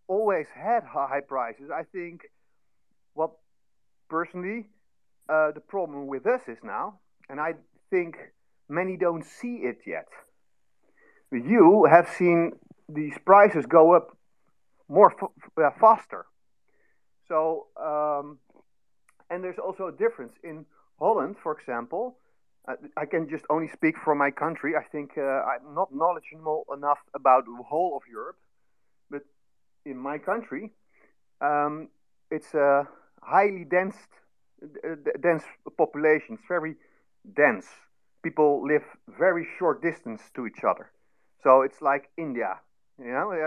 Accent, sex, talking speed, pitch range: Dutch, male, 125 wpm, 145-180 Hz